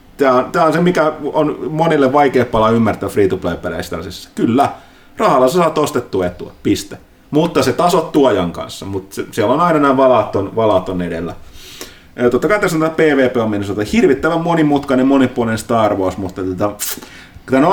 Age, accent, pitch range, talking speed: 30-49, native, 95-125 Hz, 190 wpm